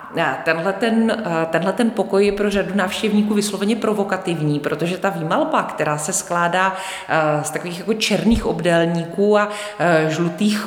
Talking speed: 135 wpm